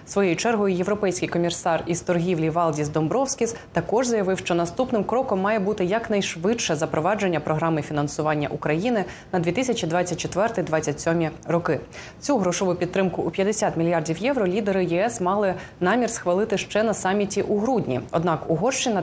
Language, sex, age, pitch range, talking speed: Ukrainian, female, 20-39, 165-215 Hz, 130 wpm